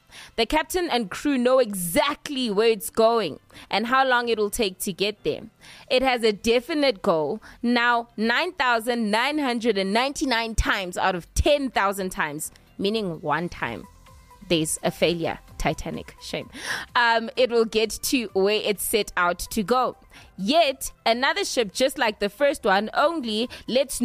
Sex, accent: female, South African